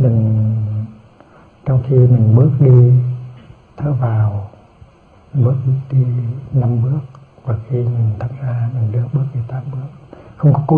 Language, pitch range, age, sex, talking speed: Vietnamese, 115-140 Hz, 60-79, male, 145 wpm